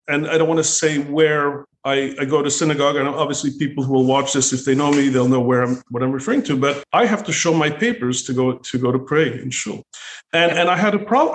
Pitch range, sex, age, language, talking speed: 135-180 Hz, male, 40-59, English, 275 wpm